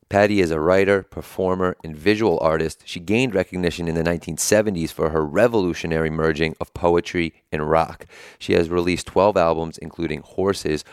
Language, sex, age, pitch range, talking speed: English, male, 30-49, 80-90 Hz, 160 wpm